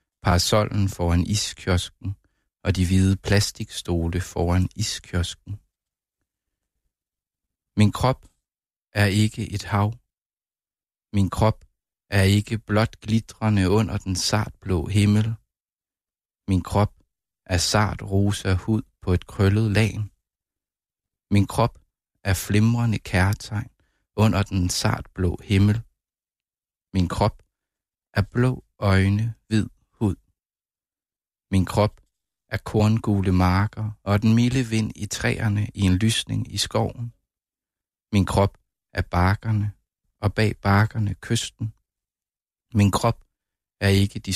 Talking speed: 105 wpm